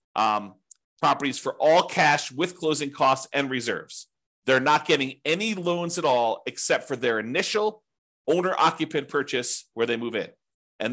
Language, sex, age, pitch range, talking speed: English, male, 40-59, 115-155 Hz, 155 wpm